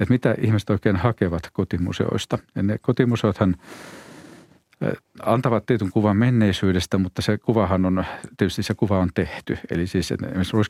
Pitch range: 90-105 Hz